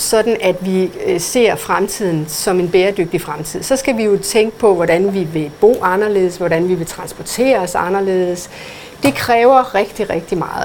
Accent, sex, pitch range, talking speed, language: native, female, 190-230 Hz, 175 wpm, Danish